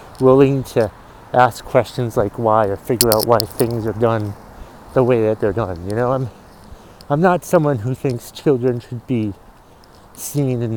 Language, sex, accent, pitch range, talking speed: English, male, American, 110-135 Hz, 175 wpm